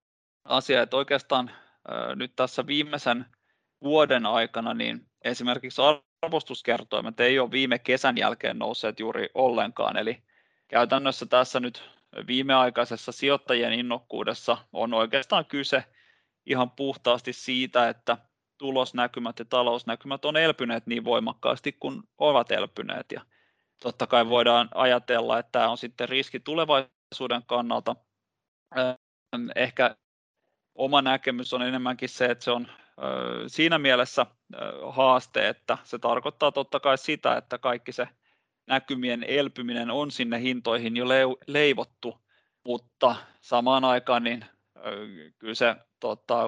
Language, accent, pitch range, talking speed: Finnish, native, 120-135 Hz, 125 wpm